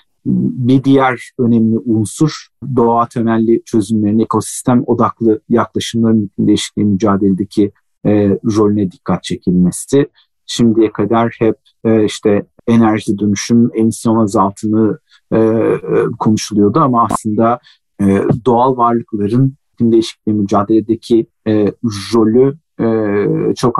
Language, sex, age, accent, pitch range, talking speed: Turkish, male, 50-69, native, 110-125 Hz, 100 wpm